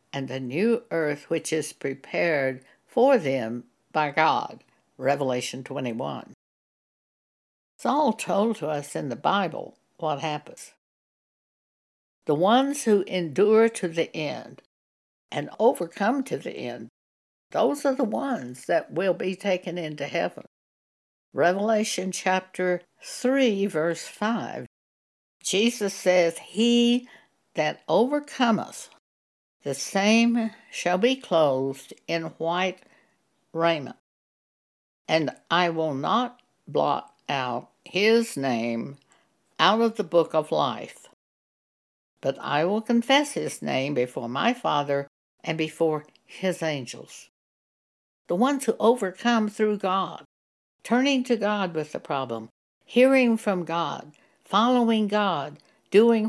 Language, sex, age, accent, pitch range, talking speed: English, female, 60-79, American, 150-230 Hz, 115 wpm